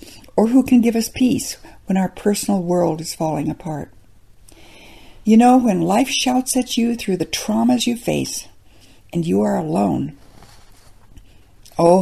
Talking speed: 150 wpm